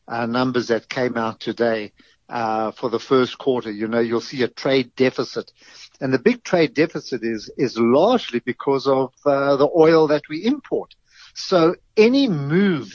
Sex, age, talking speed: male, 50-69, 170 wpm